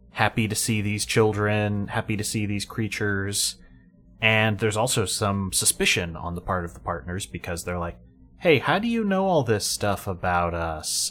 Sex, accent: male, American